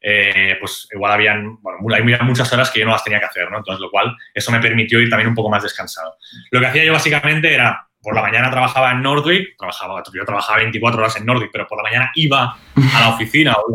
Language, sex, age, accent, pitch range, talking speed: Spanish, male, 20-39, Spanish, 110-130 Hz, 245 wpm